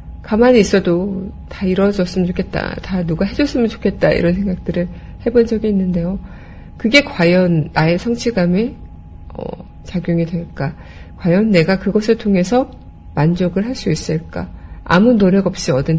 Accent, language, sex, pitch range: native, Korean, female, 165-205 Hz